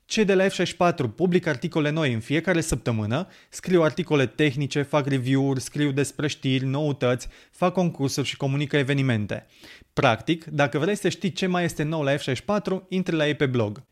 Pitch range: 130-170 Hz